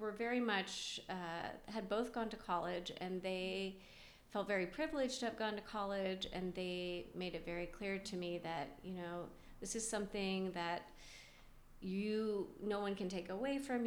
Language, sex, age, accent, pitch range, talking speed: English, female, 30-49, American, 175-200 Hz, 175 wpm